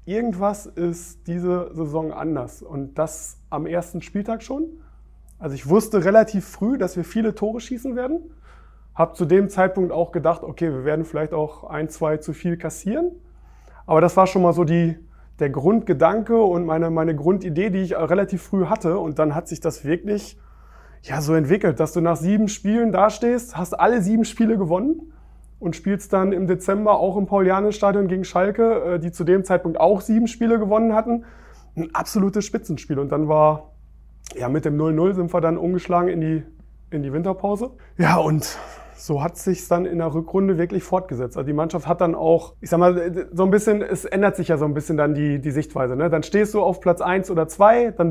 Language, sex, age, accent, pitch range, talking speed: German, male, 30-49, German, 160-195 Hz, 200 wpm